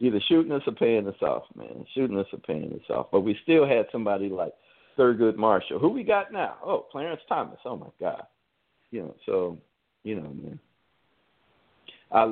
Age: 50-69